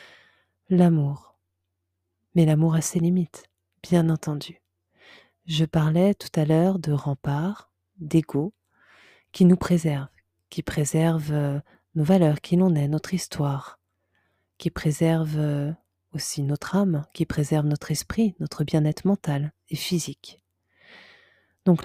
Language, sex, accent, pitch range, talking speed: French, female, French, 150-190 Hz, 120 wpm